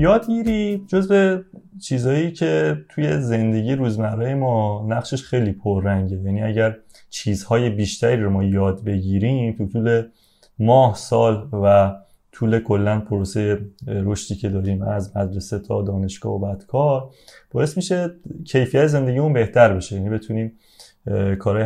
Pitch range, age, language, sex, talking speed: 105-135 Hz, 30-49, Persian, male, 135 wpm